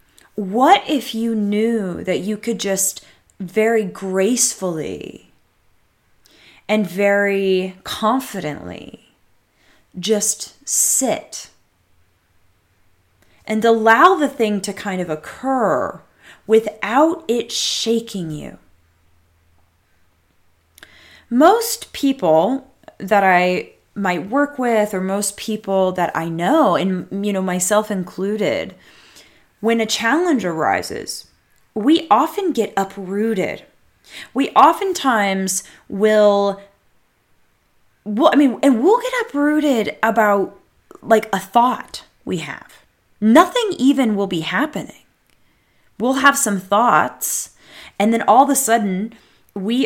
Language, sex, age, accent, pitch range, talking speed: English, female, 30-49, American, 185-245 Hz, 100 wpm